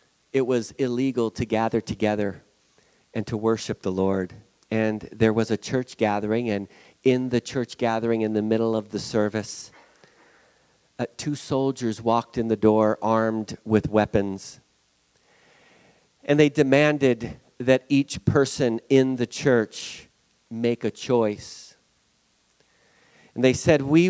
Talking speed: 130 wpm